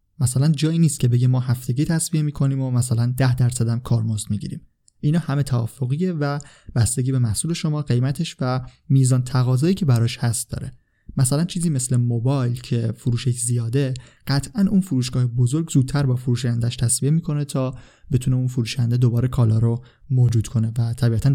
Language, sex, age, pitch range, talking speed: Persian, male, 20-39, 120-140 Hz, 165 wpm